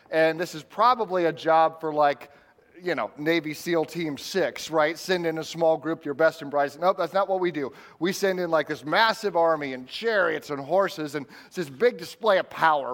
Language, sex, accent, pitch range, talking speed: English, male, American, 140-175 Hz, 225 wpm